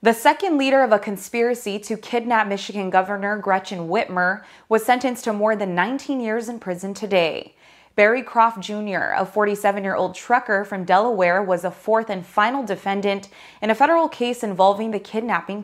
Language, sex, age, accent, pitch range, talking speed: English, female, 20-39, American, 190-225 Hz, 165 wpm